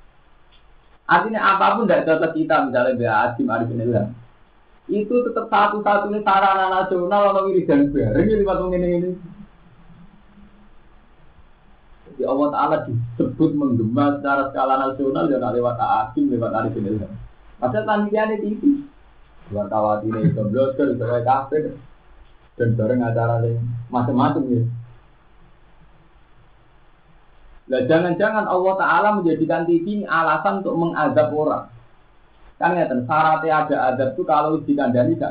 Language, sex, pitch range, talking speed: Indonesian, male, 120-190 Hz, 115 wpm